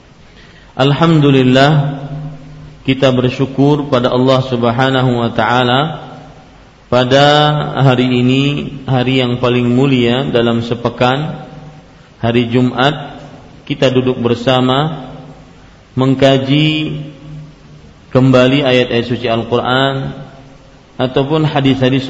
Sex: male